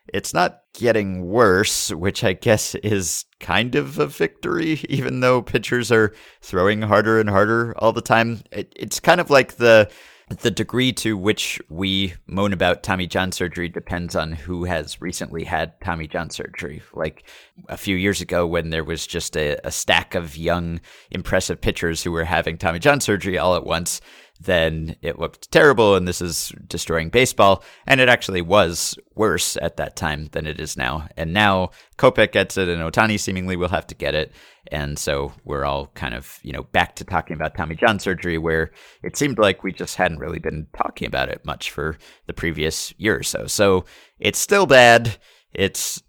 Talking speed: 190 wpm